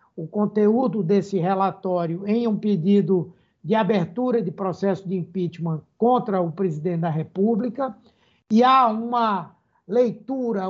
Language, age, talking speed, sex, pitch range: Portuguese, 60-79, 125 wpm, male, 180-225 Hz